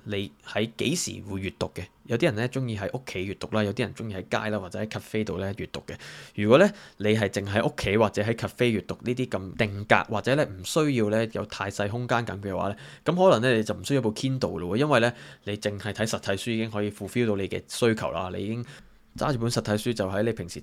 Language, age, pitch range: Chinese, 20-39, 95-115 Hz